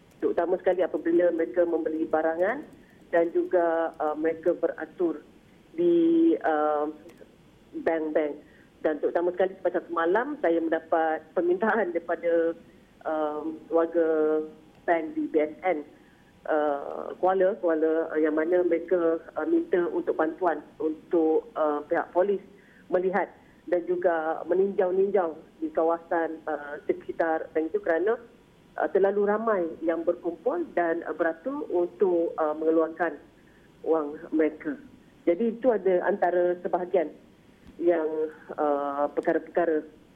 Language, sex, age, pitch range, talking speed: Malay, female, 40-59, 155-185 Hz, 105 wpm